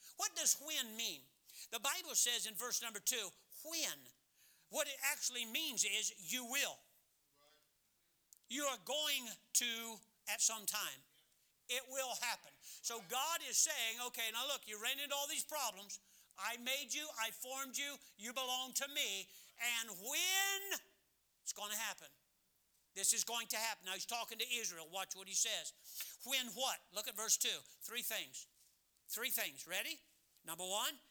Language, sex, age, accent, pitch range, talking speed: English, male, 60-79, American, 190-255 Hz, 165 wpm